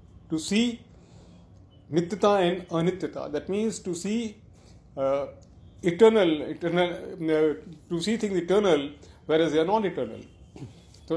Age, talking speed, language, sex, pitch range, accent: 40-59, 125 wpm, Hindi, male, 145-185 Hz, native